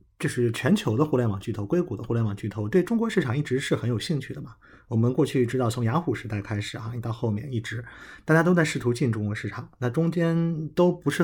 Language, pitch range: Chinese, 115-145 Hz